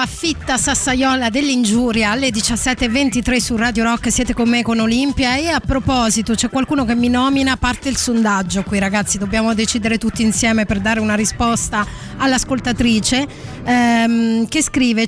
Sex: female